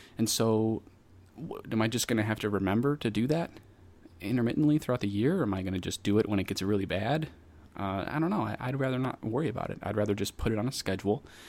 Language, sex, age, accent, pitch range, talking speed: English, male, 30-49, American, 95-115 Hz, 260 wpm